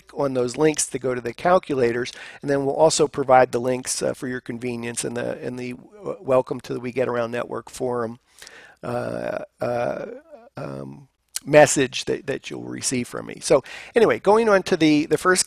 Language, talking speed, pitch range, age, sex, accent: English, 195 wpm, 135-165 Hz, 50-69, male, American